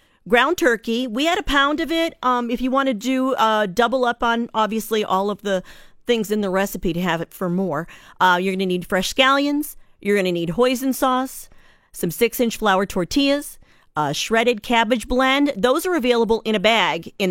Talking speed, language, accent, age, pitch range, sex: 205 wpm, English, American, 40-59, 190-260 Hz, female